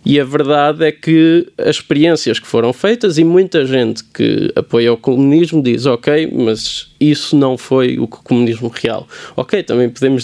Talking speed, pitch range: 170 wpm, 125-155 Hz